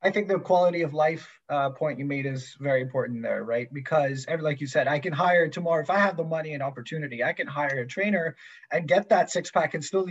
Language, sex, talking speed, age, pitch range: English, male, 255 wpm, 20-39, 135-170 Hz